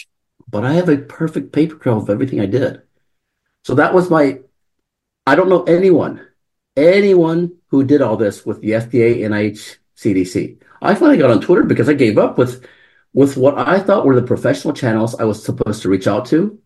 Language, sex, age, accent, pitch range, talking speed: English, male, 50-69, American, 110-155 Hz, 195 wpm